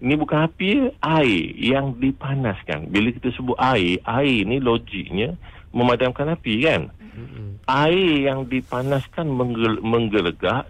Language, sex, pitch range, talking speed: English, male, 105-130 Hz, 120 wpm